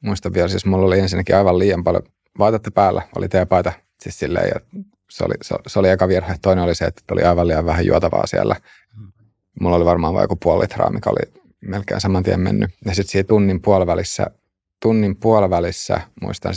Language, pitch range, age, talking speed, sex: Finnish, 90-100 Hz, 30-49, 190 wpm, male